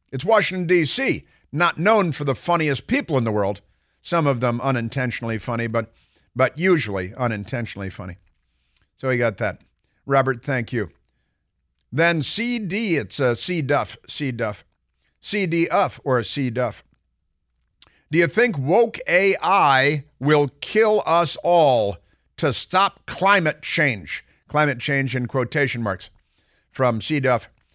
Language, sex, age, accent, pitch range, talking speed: English, male, 50-69, American, 115-155 Hz, 130 wpm